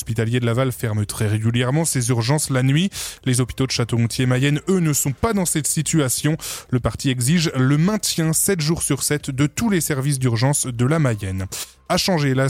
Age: 20-39